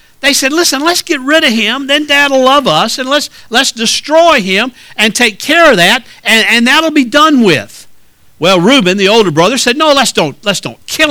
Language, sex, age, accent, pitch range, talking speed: English, male, 50-69, American, 190-280 Hz, 225 wpm